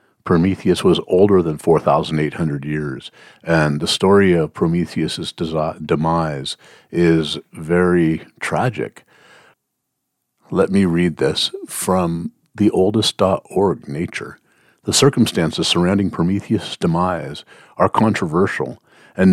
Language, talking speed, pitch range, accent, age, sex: English, 95 wpm, 80-90 Hz, American, 50-69, male